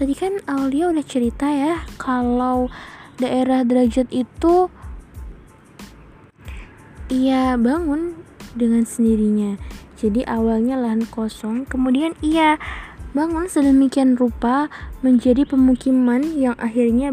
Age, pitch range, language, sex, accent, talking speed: 10-29, 235-290 Hz, Indonesian, female, native, 95 wpm